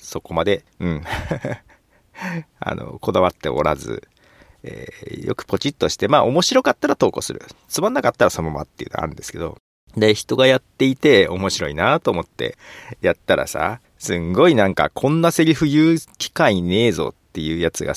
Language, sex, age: Japanese, male, 40-59